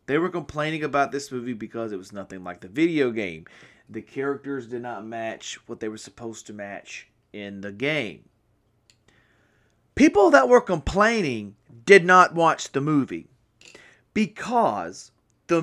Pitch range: 115-165 Hz